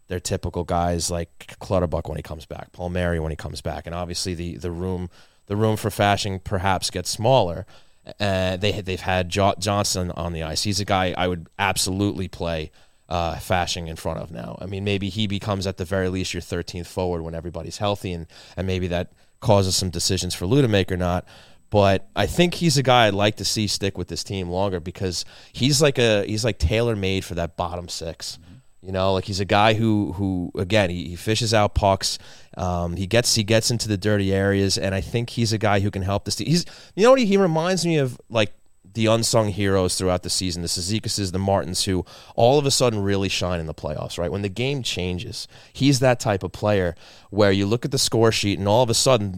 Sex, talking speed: male, 230 wpm